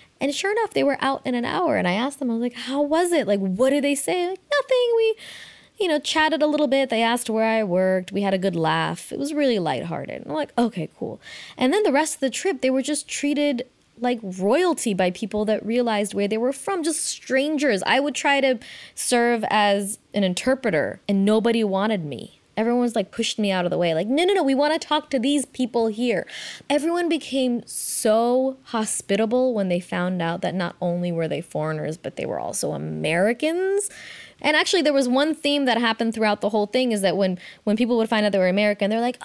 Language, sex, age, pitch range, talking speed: English, female, 20-39, 205-280 Hz, 230 wpm